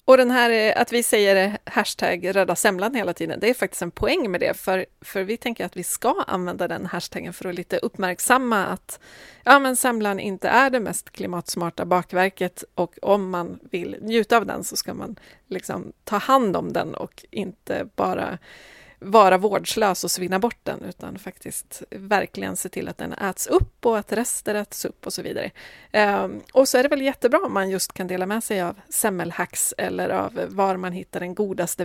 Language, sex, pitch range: Swedish, female, 185-235 Hz